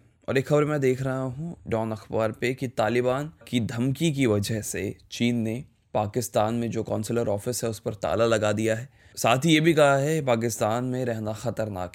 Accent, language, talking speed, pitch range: native, Hindi, 205 wpm, 110-135 Hz